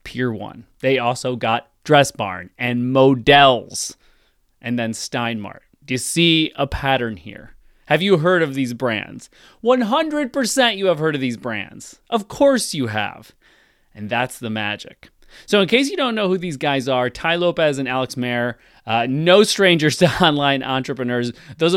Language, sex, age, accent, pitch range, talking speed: English, male, 30-49, American, 120-145 Hz, 170 wpm